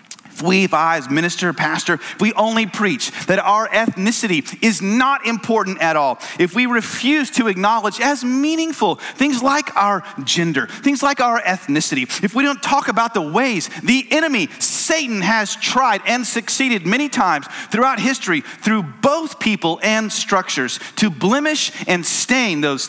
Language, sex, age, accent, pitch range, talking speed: English, male, 40-59, American, 205-290 Hz, 165 wpm